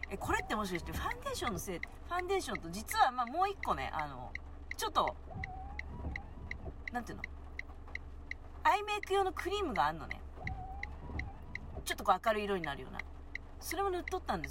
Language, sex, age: Japanese, female, 40-59